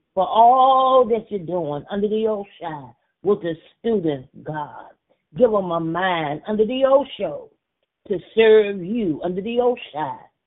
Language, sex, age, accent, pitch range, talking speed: English, female, 40-59, American, 160-205 Hz, 145 wpm